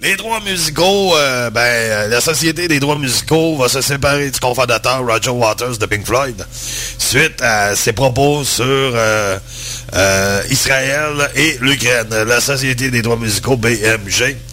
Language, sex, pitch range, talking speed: French, male, 115-140 Hz, 150 wpm